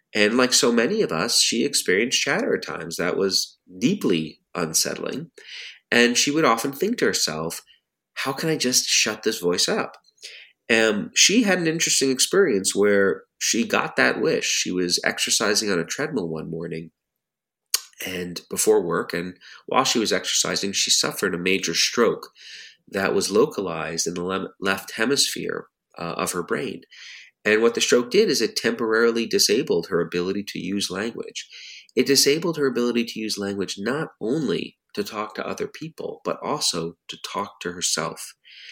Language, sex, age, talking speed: English, male, 30-49, 165 wpm